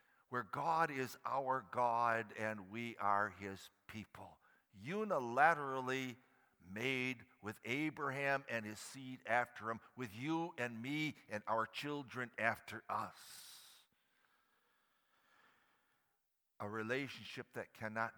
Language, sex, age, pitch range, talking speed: English, male, 60-79, 105-140 Hz, 105 wpm